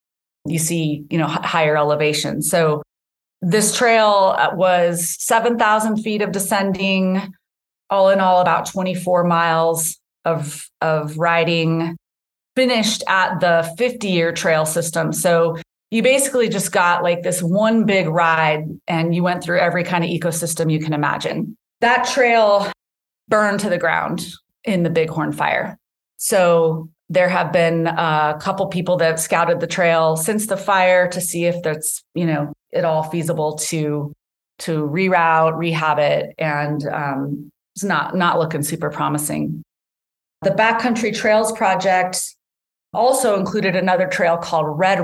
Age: 30-49